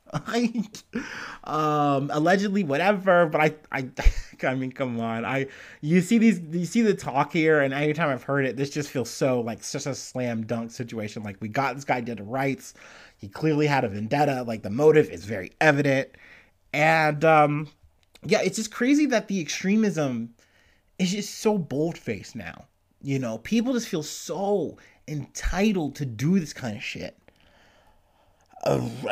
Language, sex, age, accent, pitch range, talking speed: English, male, 30-49, American, 125-175 Hz, 170 wpm